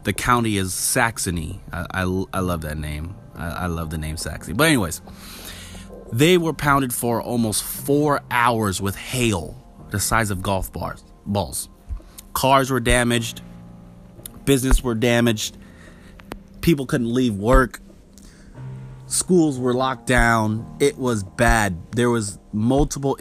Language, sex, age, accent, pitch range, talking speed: English, male, 30-49, American, 90-120 Hz, 135 wpm